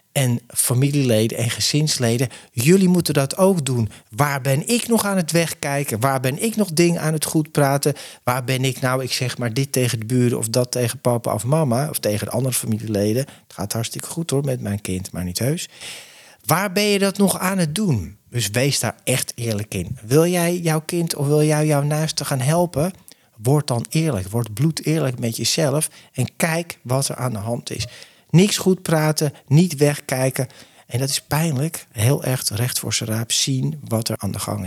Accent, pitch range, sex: Dutch, 115-155 Hz, male